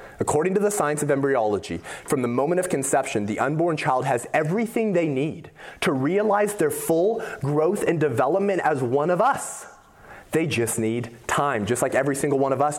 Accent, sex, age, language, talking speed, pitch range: American, male, 30-49, English, 190 wpm, 115-195 Hz